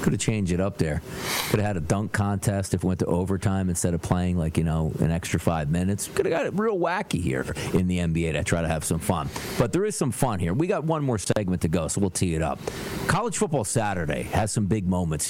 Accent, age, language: American, 40-59, English